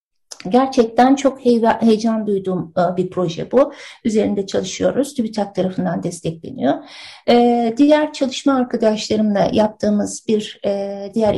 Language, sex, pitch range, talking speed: Turkish, female, 190-250 Hz, 95 wpm